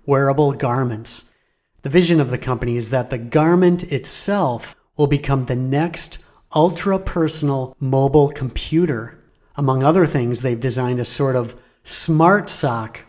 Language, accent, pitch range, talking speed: English, American, 125-150 Hz, 135 wpm